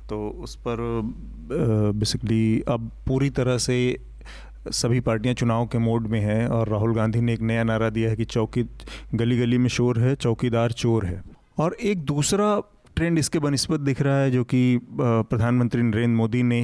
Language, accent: Hindi, native